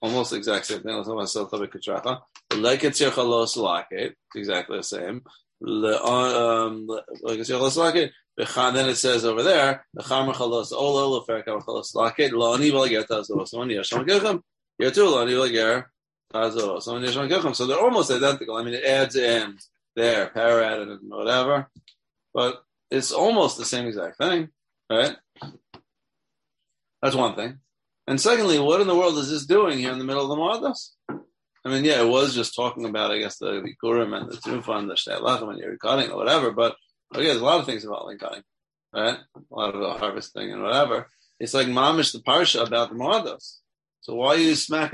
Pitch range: 115-140 Hz